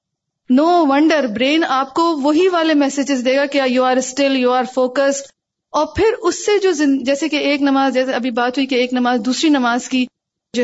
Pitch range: 250-310 Hz